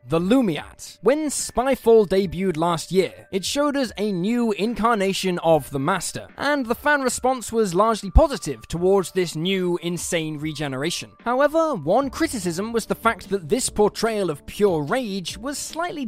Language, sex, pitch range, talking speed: English, male, 175-235 Hz, 155 wpm